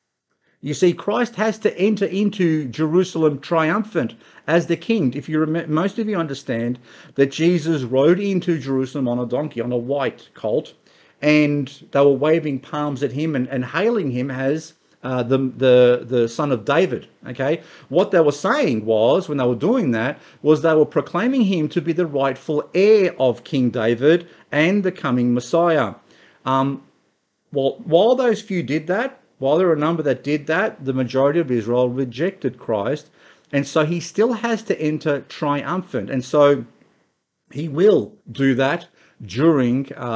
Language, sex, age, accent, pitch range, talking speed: English, male, 50-69, Australian, 125-165 Hz, 170 wpm